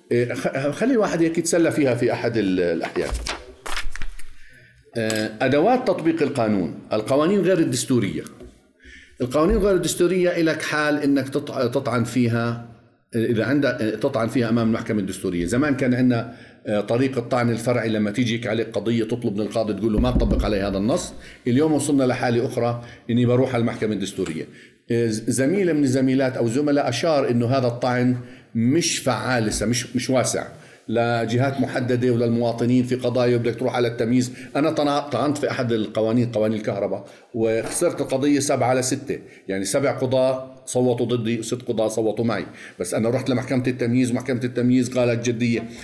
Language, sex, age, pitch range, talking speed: Arabic, male, 50-69, 115-140 Hz, 145 wpm